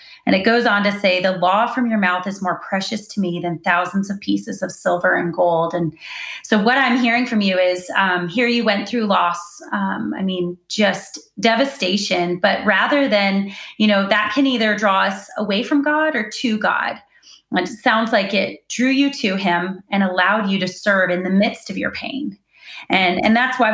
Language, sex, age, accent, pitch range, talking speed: English, female, 30-49, American, 185-225 Hz, 205 wpm